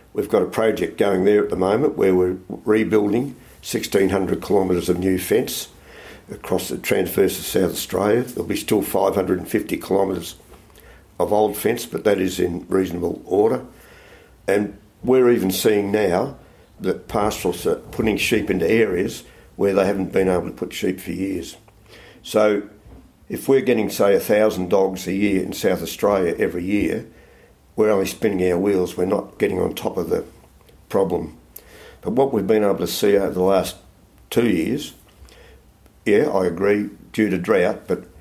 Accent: Australian